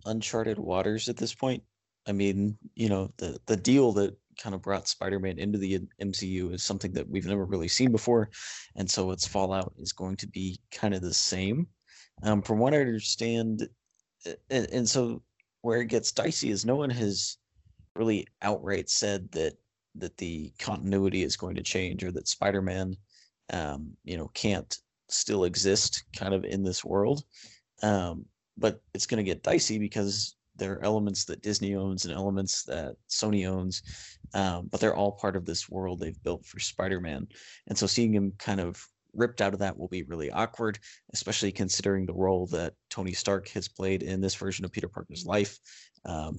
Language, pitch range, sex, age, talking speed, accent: English, 95-105 Hz, male, 30-49, 185 wpm, American